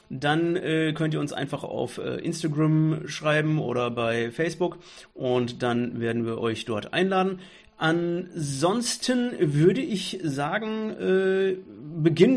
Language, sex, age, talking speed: German, male, 30-49, 125 wpm